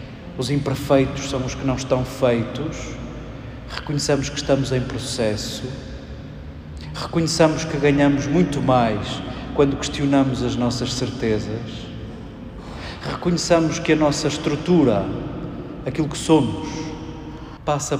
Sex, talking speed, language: male, 105 wpm, Portuguese